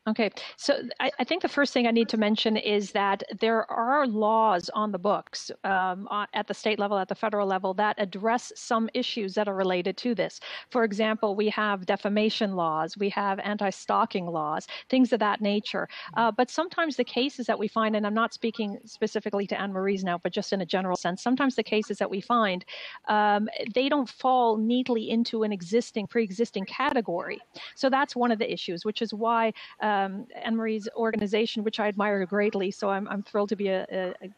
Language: English